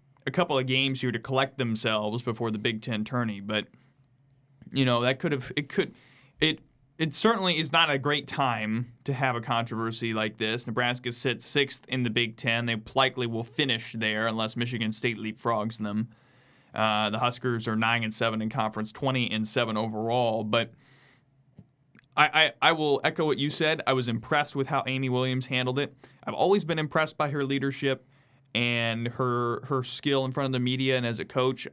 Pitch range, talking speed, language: 120-140 Hz, 195 wpm, English